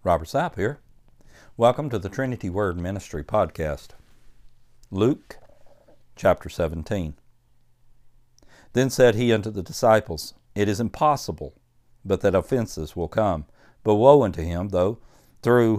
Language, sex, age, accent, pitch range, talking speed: English, male, 60-79, American, 95-125 Hz, 125 wpm